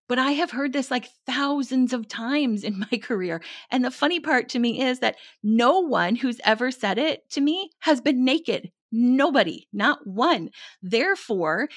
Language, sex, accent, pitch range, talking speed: English, female, American, 200-280 Hz, 180 wpm